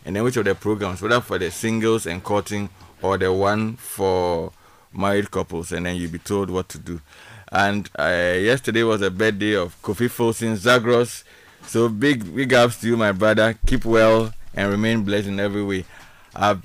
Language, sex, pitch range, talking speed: English, male, 95-110 Hz, 190 wpm